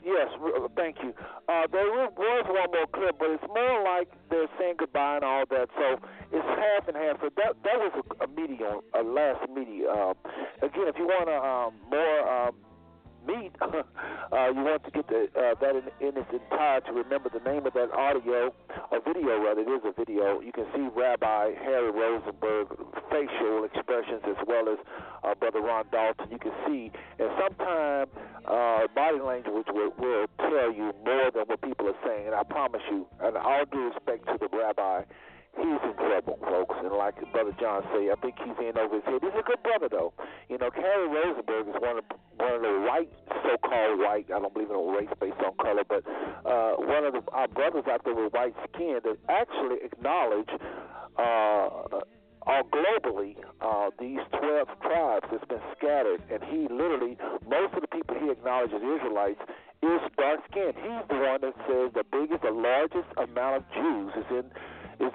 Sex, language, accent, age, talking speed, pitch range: male, English, American, 50-69, 185 wpm, 115-185 Hz